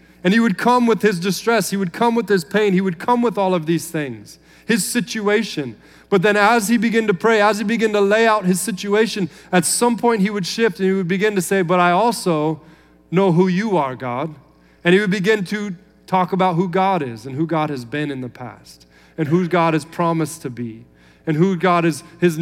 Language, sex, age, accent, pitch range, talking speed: English, male, 30-49, American, 160-205 Hz, 235 wpm